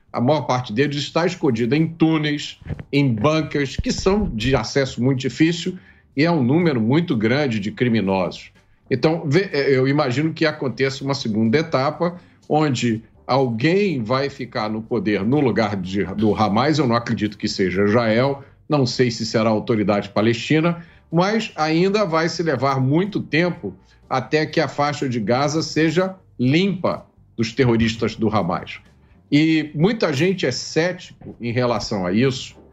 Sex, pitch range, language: male, 120-175 Hz, Portuguese